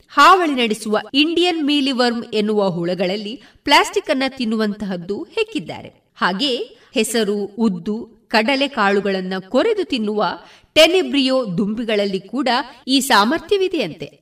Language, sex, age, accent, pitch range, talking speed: Kannada, female, 30-49, native, 210-320 Hz, 95 wpm